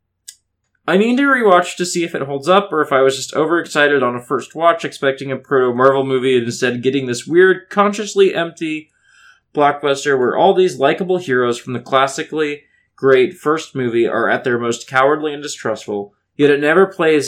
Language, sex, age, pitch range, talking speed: English, male, 20-39, 130-185 Hz, 190 wpm